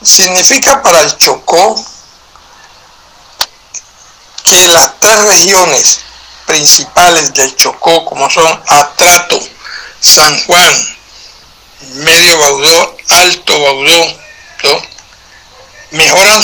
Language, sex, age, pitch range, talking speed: Spanish, male, 60-79, 155-195 Hz, 80 wpm